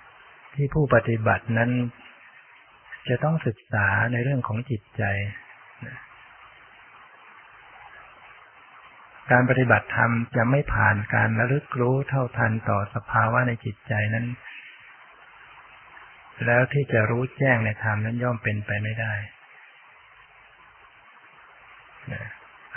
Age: 20-39